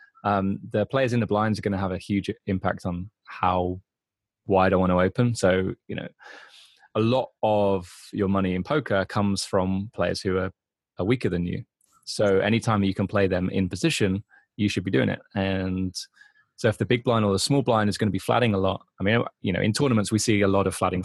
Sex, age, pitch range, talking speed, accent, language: male, 20-39, 95-110 Hz, 230 wpm, British, English